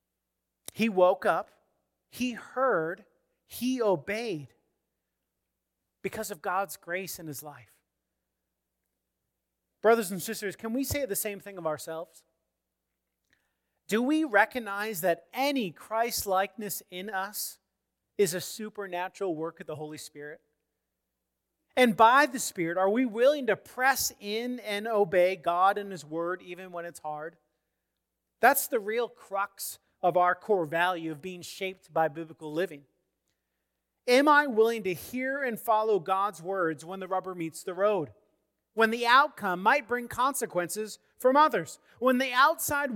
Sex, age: male, 40-59